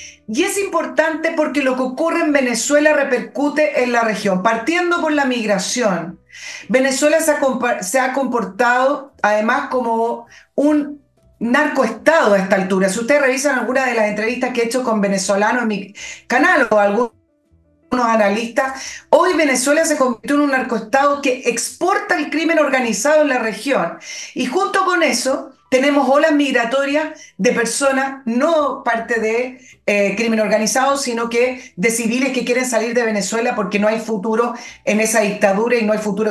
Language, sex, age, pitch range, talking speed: Spanish, female, 40-59, 220-285 Hz, 160 wpm